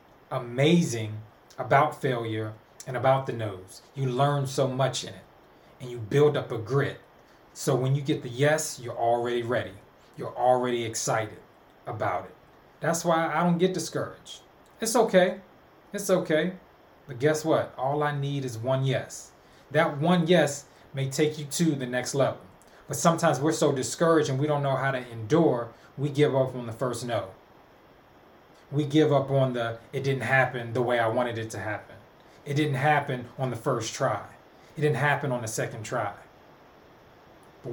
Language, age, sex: English, 20-39, male